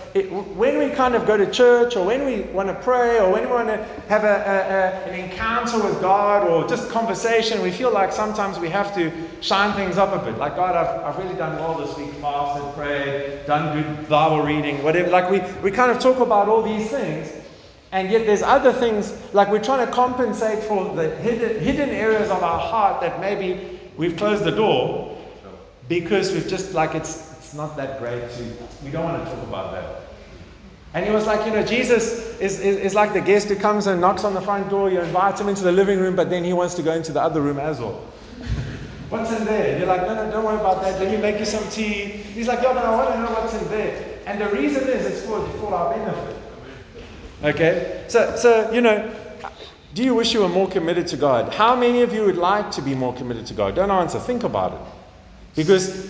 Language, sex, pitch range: English, male, 165-220 Hz